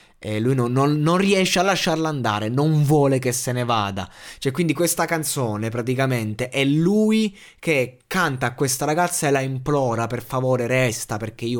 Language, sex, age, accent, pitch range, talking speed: Italian, male, 20-39, native, 100-130 Hz, 175 wpm